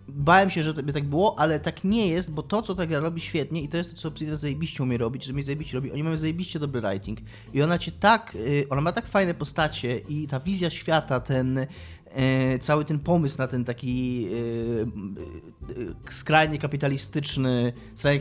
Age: 20-39